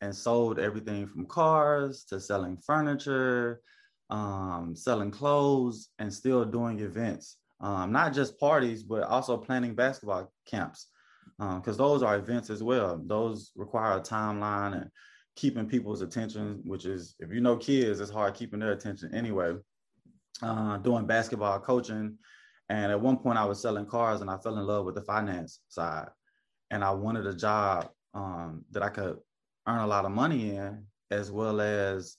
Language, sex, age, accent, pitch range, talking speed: English, male, 20-39, American, 95-115 Hz, 170 wpm